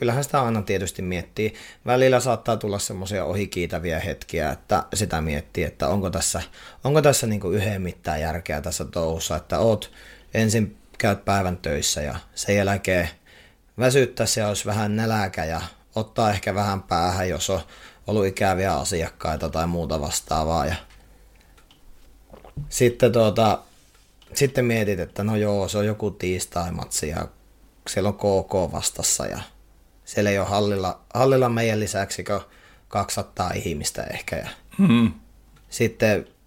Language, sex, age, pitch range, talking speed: Finnish, male, 30-49, 90-110 Hz, 130 wpm